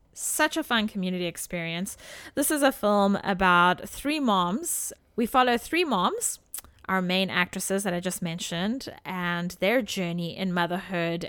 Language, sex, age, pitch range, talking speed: English, female, 30-49, 180-210 Hz, 150 wpm